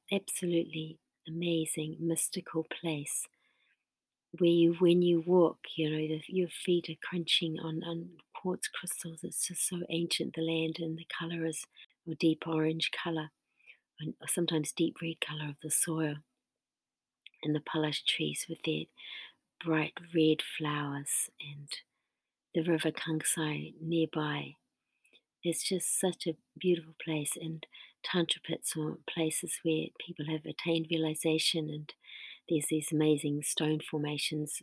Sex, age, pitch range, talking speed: female, 50-69, 155-170 Hz, 135 wpm